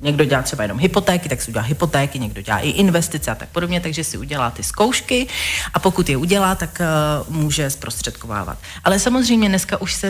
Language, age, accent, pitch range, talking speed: Czech, 40-59, native, 155-195 Hz, 195 wpm